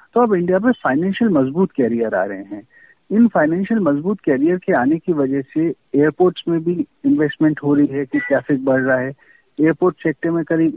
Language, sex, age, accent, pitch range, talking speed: Hindi, male, 50-69, native, 135-200 Hz, 195 wpm